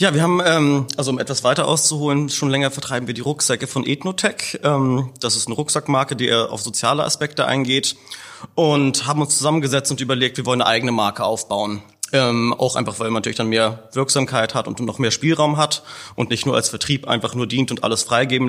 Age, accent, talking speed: 30-49, German, 205 wpm